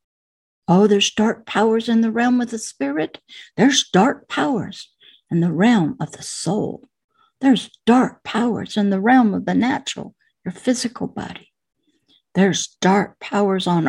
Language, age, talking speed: English, 60-79, 150 wpm